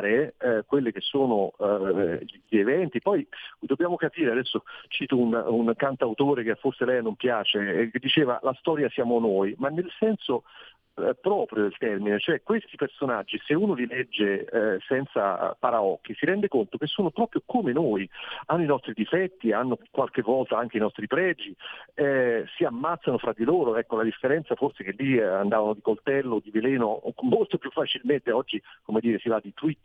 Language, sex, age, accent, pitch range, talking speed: Italian, male, 40-59, native, 115-150 Hz, 185 wpm